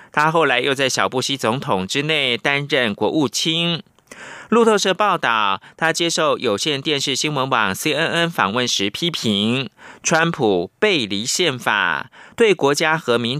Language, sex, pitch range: Chinese, male, 125-170 Hz